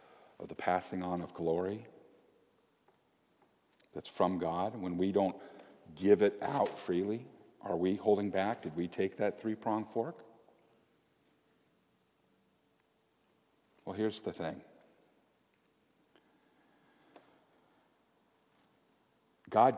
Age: 50-69